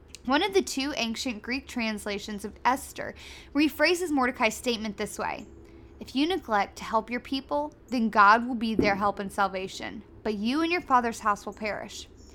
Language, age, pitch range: English, 10-29, 215-280 Hz